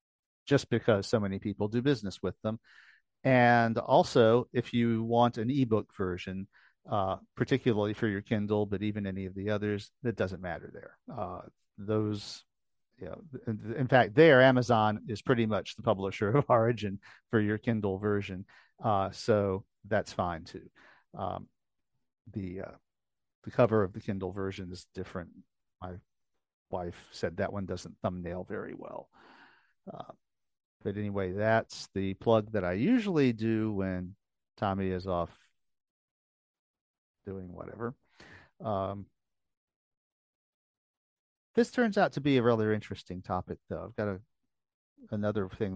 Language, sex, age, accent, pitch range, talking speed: English, male, 50-69, American, 95-120 Hz, 140 wpm